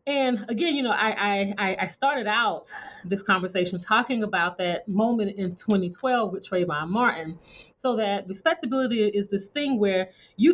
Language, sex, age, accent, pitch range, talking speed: English, female, 30-49, American, 185-230 Hz, 160 wpm